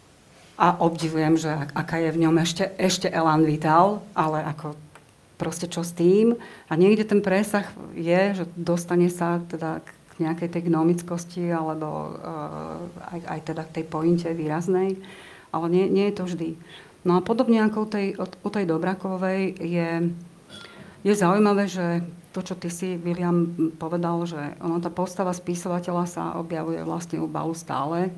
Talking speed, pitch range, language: 160 wpm, 165-185 Hz, Slovak